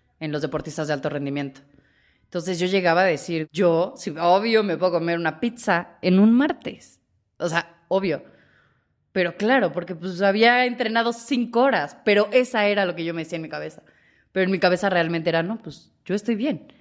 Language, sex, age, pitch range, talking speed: Spanish, female, 20-39, 155-185 Hz, 195 wpm